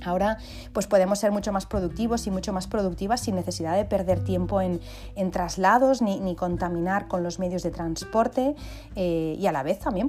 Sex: female